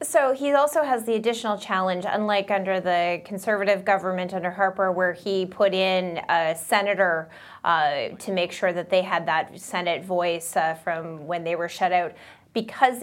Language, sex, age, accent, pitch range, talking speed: English, female, 20-39, American, 175-220 Hz, 175 wpm